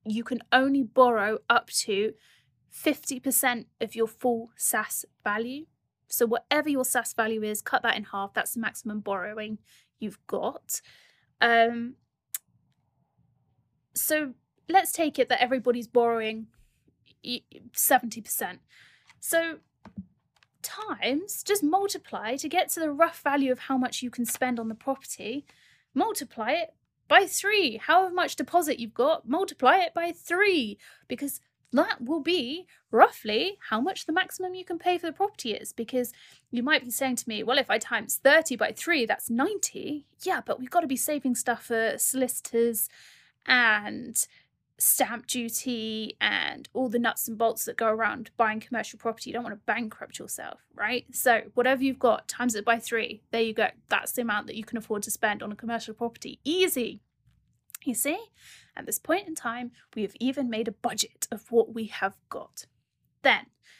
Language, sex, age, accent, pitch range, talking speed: English, female, 30-49, British, 230-300 Hz, 165 wpm